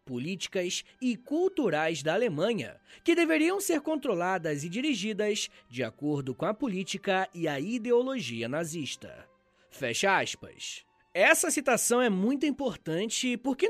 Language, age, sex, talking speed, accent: Portuguese, 20-39, male, 125 wpm, Brazilian